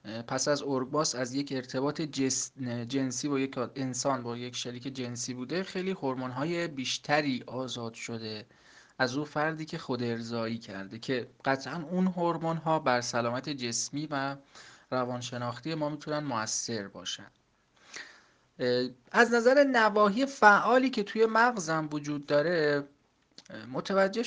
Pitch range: 125-155 Hz